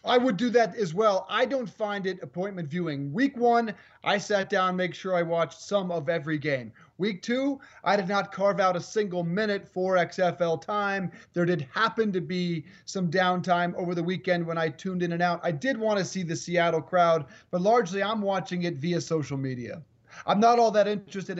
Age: 30-49